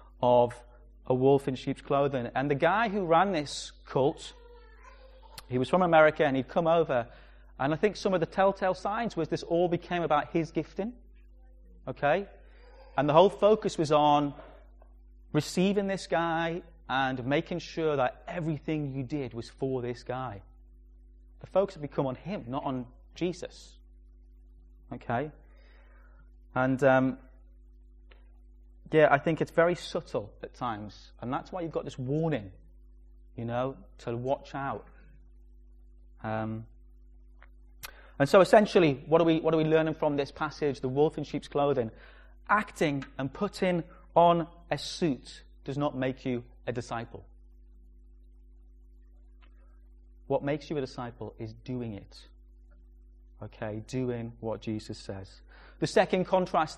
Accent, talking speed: British, 140 wpm